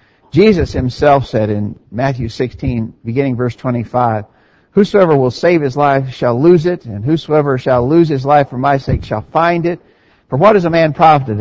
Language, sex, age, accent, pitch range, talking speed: English, male, 60-79, American, 120-160 Hz, 185 wpm